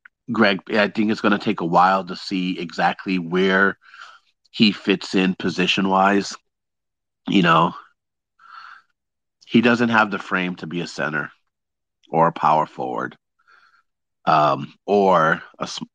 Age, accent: 40-59, American